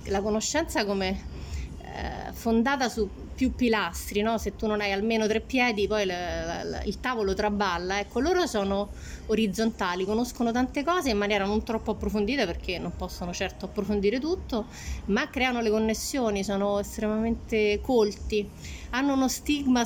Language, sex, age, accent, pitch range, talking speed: Italian, female, 30-49, native, 200-230 Hz, 150 wpm